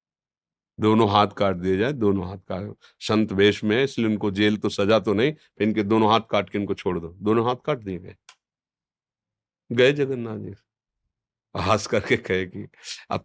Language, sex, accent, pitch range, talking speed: Hindi, male, native, 100-120 Hz, 170 wpm